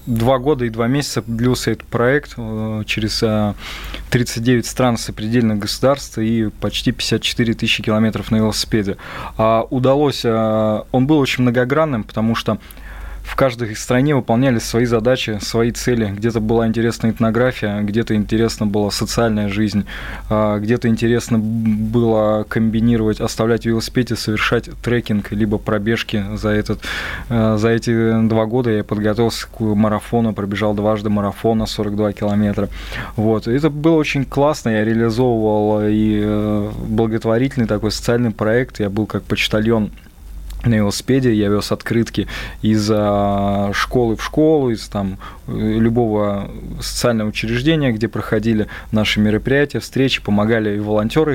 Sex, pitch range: male, 105-120 Hz